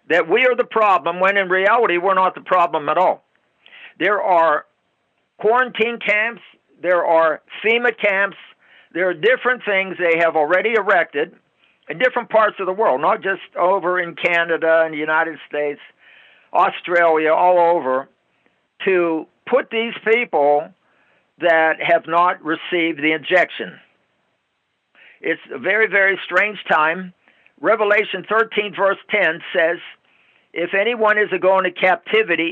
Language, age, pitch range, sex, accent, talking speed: English, 60-79, 165-205 Hz, male, American, 140 wpm